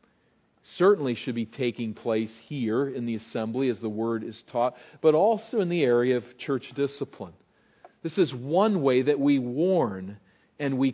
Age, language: 50-69, English